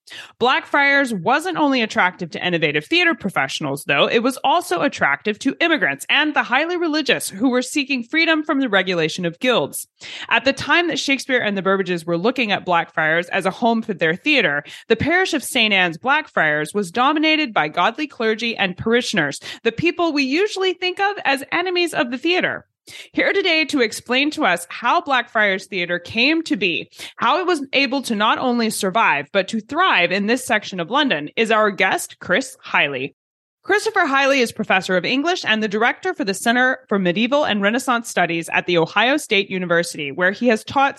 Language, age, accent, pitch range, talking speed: English, 20-39, American, 190-280 Hz, 190 wpm